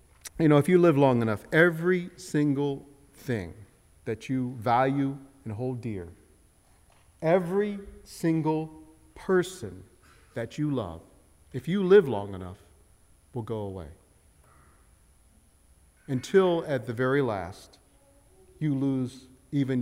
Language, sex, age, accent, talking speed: English, male, 50-69, American, 115 wpm